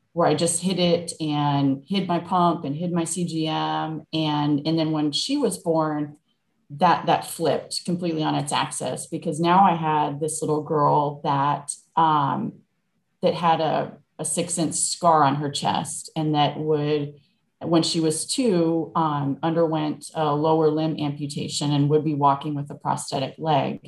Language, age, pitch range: English, 30-49, 150-175 Hz